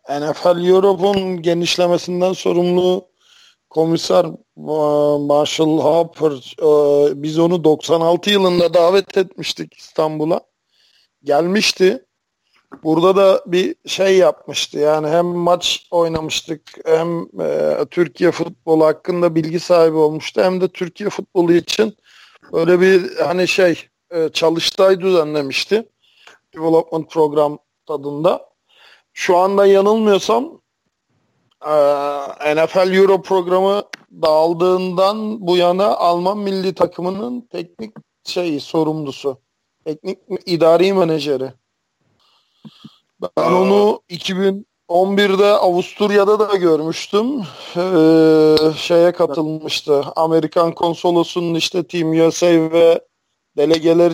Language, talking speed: Turkish, 90 wpm